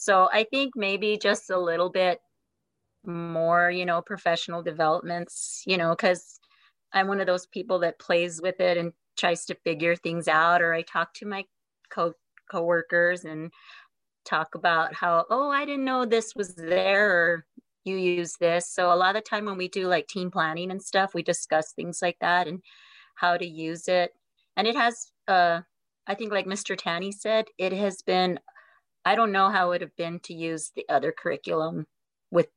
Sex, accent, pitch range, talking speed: female, American, 170-195 Hz, 190 wpm